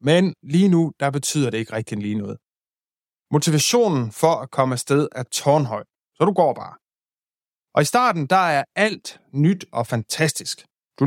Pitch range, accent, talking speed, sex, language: 125-170 Hz, native, 170 wpm, male, Danish